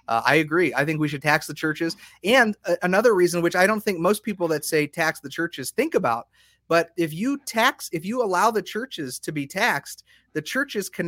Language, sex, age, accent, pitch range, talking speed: English, male, 30-49, American, 140-185 Hz, 220 wpm